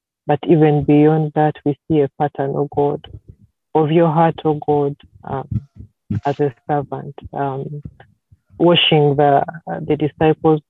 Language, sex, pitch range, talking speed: English, female, 135-155 Hz, 150 wpm